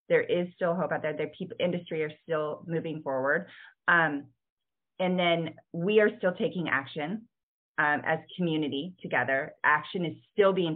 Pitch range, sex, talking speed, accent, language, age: 155-185 Hz, female, 160 wpm, American, English, 20-39